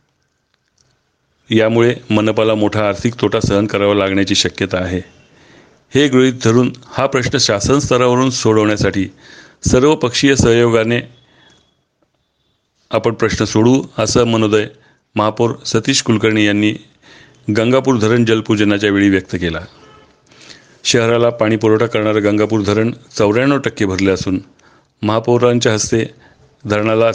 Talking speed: 105 wpm